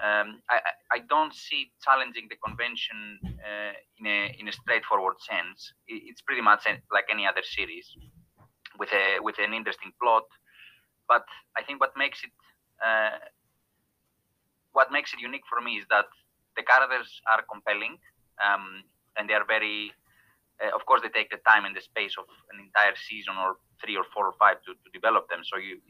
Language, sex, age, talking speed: English, male, 20-39, 180 wpm